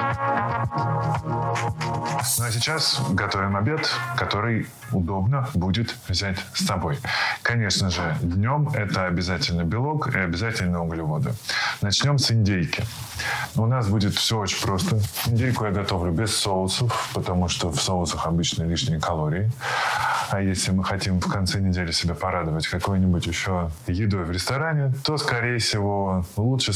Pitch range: 95-120 Hz